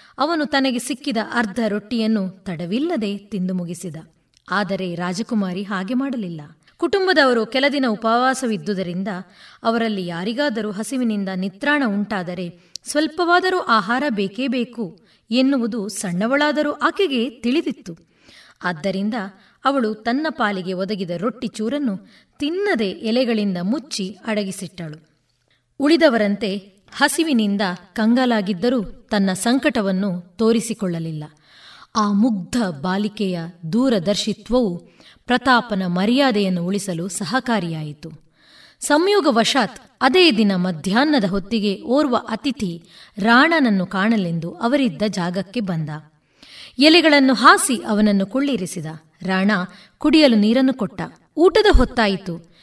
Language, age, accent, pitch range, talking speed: Kannada, 20-39, native, 190-255 Hz, 85 wpm